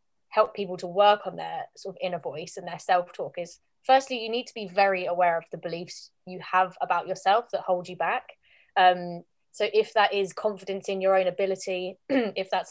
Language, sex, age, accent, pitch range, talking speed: English, female, 20-39, British, 175-200 Hz, 210 wpm